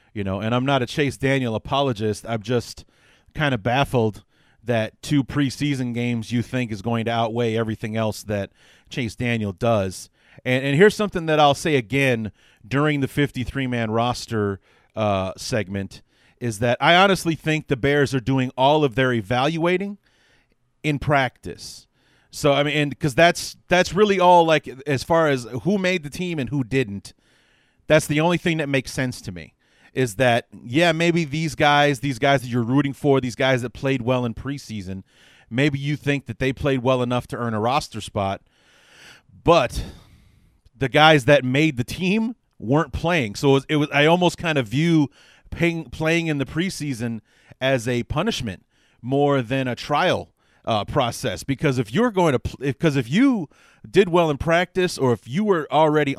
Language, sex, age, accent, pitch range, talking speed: English, male, 30-49, American, 115-150 Hz, 185 wpm